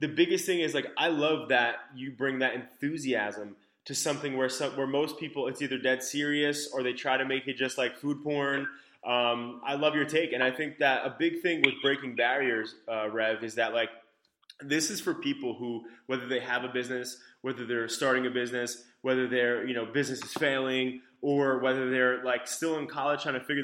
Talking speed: 215 wpm